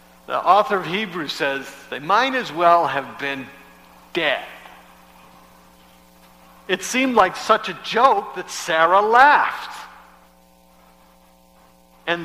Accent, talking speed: American, 110 wpm